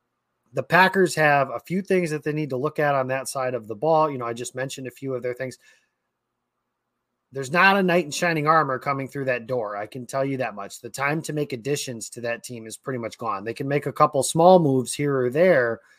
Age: 30-49